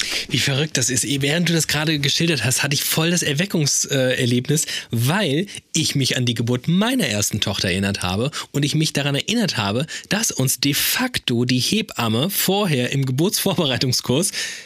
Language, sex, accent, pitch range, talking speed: German, male, German, 125-160 Hz, 170 wpm